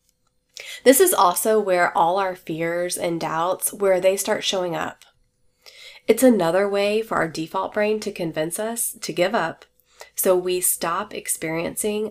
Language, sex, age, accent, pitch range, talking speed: English, female, 20-39, American, 175-215 Hz, 155 wpm